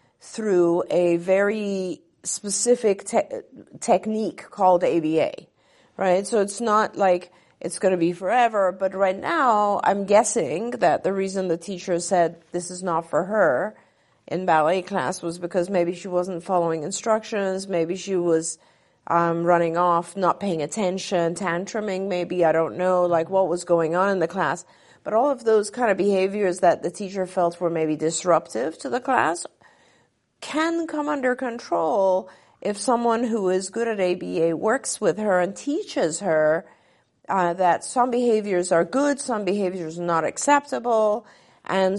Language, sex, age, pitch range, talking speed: English, female, 40-59, 175-205 Hz, 155 wpm